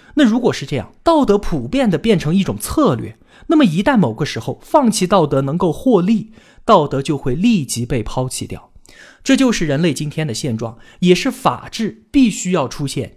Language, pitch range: Chinese, 135-225 Hz